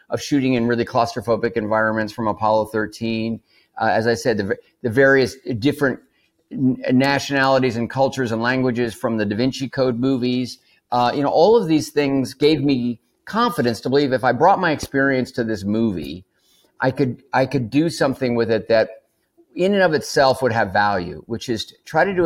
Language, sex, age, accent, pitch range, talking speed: English, male, 50-69, American, 110-135 Hz, 190 wpm